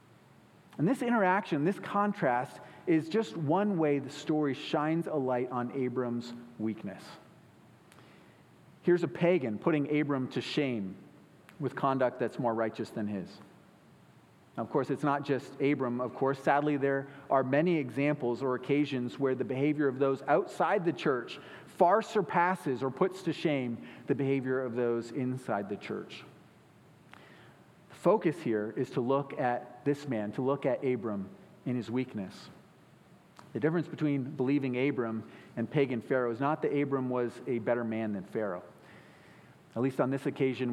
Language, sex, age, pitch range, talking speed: English, male, 40-59, 120-145 Hz, 155 wpm